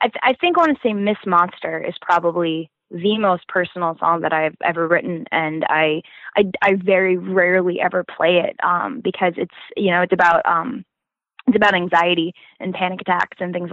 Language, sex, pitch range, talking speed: English, female, 175-200 Hz, 195 wpm